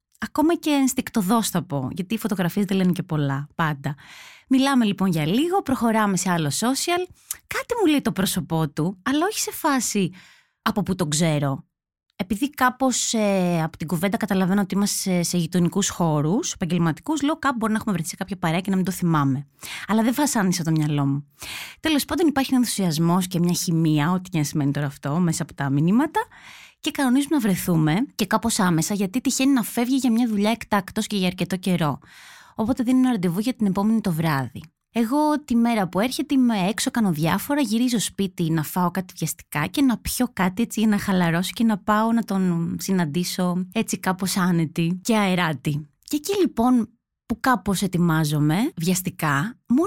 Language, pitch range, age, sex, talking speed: Greek, 170-255 Hz, 20-39, female, 190 wpm